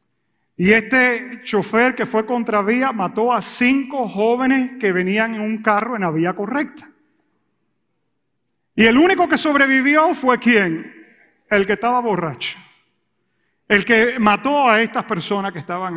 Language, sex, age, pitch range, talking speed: English, male, 40-59, 200-255 Hz, 145 wpm